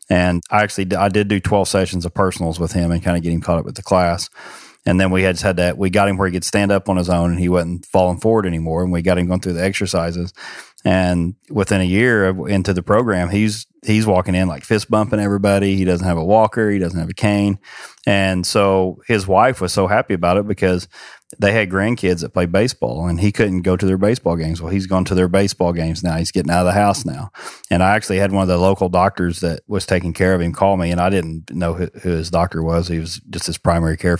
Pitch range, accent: 85-100 Hz, American